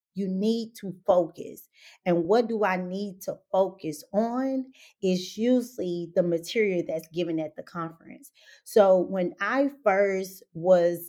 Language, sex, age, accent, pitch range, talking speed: English, female, 30-49, American, 180-230 Hz, 140 wpm